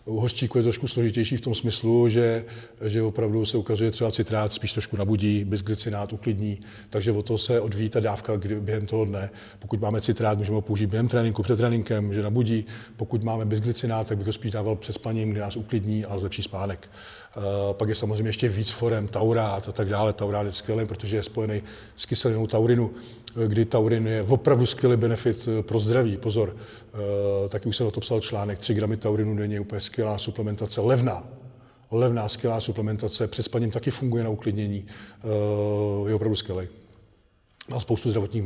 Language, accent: Czech, native